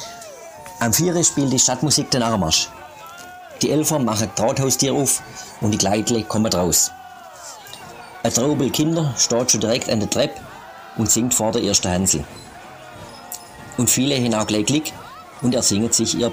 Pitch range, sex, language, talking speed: 105-135 Hz, male, German, 150 wpm